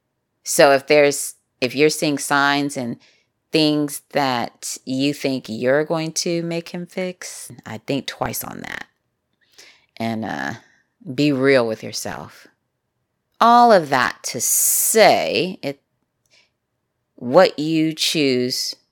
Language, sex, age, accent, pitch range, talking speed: English, female, 30-49, American, 115-135 Hz, 120 wpm